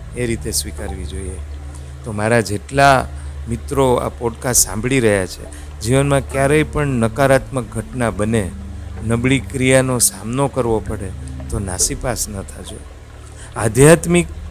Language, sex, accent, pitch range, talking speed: Gujarati, male, native, 90-120 Hz, 95 wpm